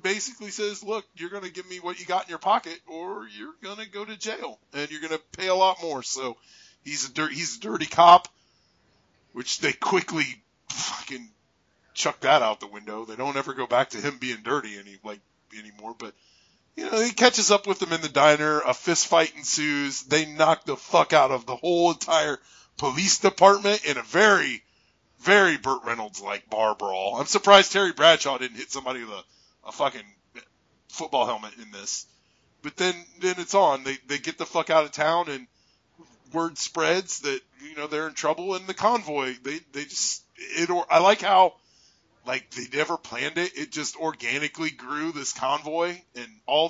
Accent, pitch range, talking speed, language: American, 140-185 Hz, 195 wpm, English